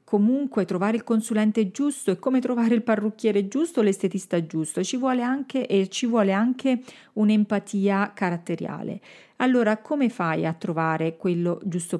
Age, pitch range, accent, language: 40-59, 180-220 Hz, native, Italian